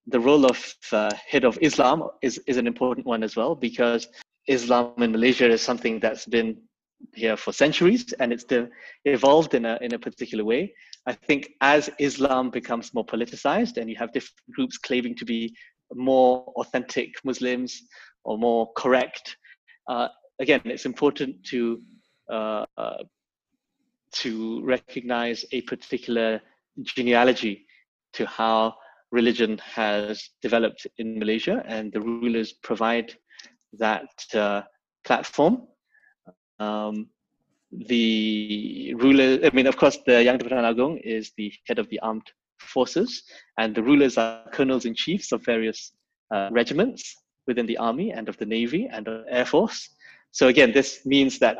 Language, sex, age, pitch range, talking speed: English, male, 20-39, 115-140 Hz, 150 wpm